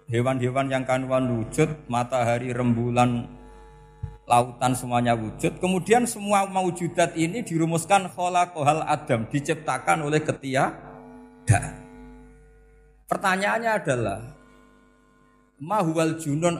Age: 50-69